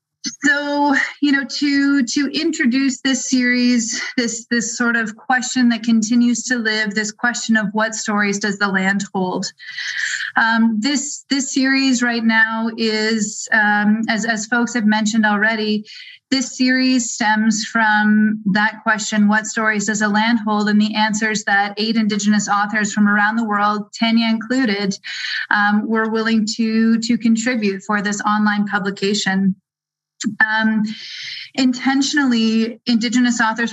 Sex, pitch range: female, 210-235 Hz